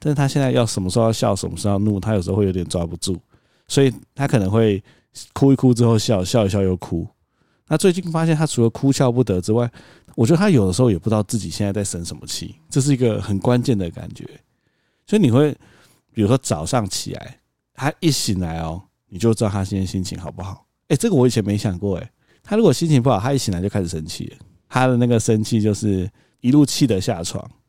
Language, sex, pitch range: Chinese, male, 95-130 Hz